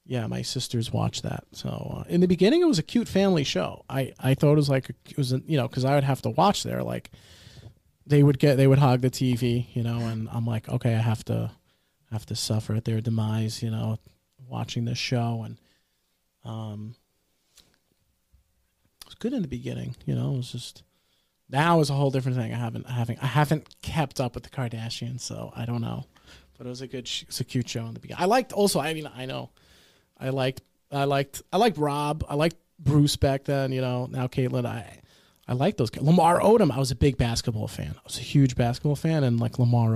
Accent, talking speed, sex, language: American, 235 wpm, male, English